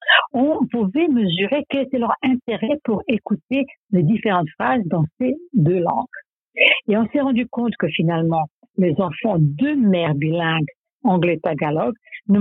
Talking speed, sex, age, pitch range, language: 145 wpm, female, 60-79, 180-260 Hz, French